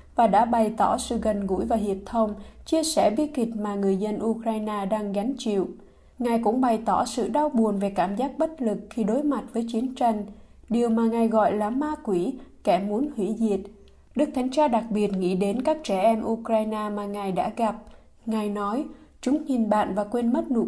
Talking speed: 215 wpm